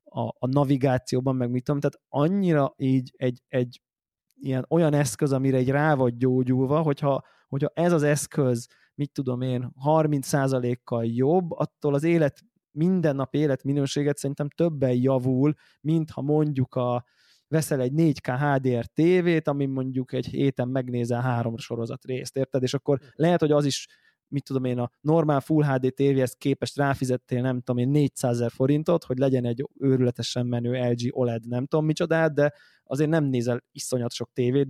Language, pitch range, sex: Hungarian, 125-145 Hz, male